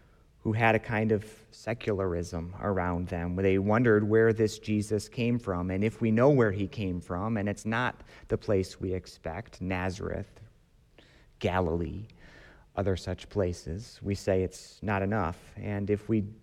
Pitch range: 95-110 Hz